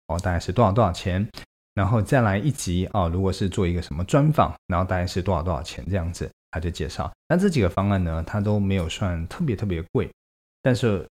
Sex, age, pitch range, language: male, 20-39, 85-105 Hz, Chinese